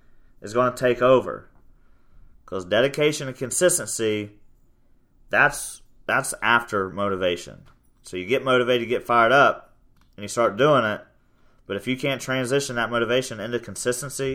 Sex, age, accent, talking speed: male, 30-49, American, 145 wpm